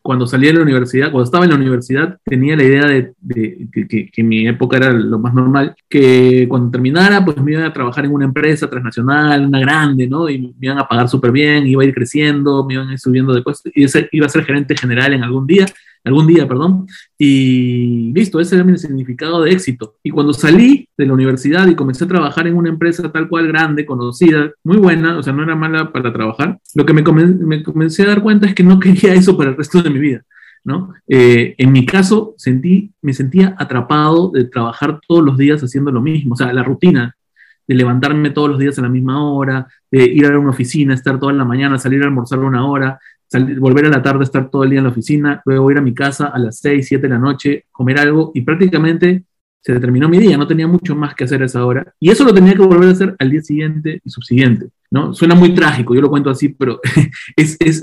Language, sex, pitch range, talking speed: English, male, 130-160 Hz, 240 wpm